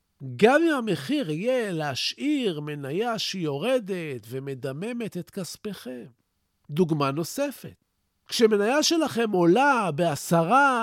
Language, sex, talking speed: Hebrew, male, 90 wpm